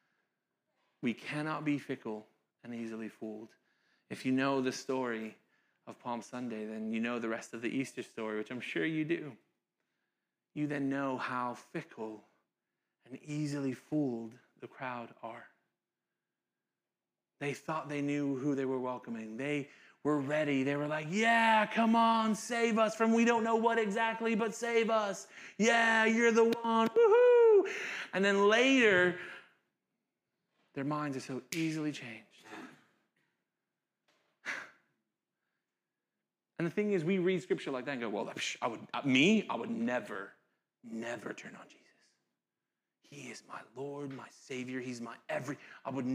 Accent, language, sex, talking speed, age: American, English, male, 150 wpm, 30-49